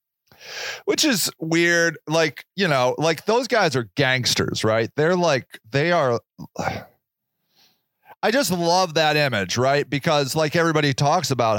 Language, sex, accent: English, male, American